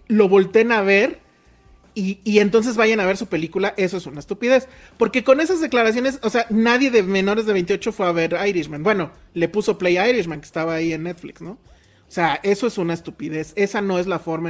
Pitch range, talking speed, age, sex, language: 170-210 Hz, 220 wpm, 30-49, male, Spanish